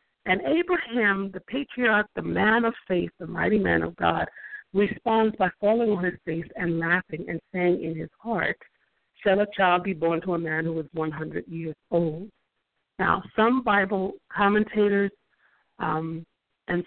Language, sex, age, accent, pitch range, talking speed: English, female, 60-79, American, 170-210 Hz, 160 wpm